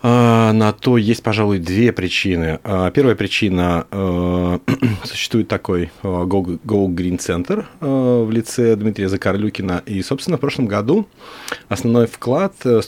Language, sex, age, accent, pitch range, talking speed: Russian, male, 30-49, native, 95-120 Hz, 145 wpm